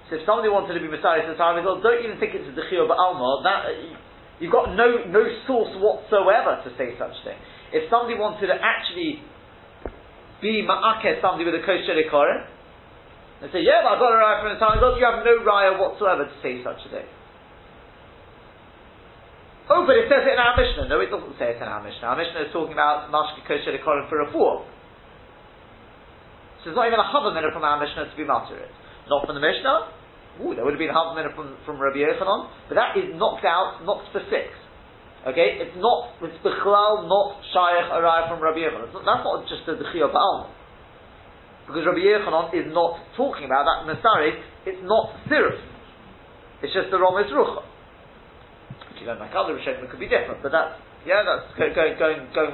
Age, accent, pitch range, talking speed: 30-49, British, 160-240 Hz, 200 wpm